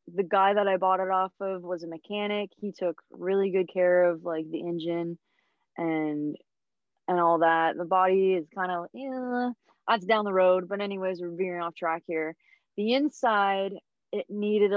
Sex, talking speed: female, 185 wpm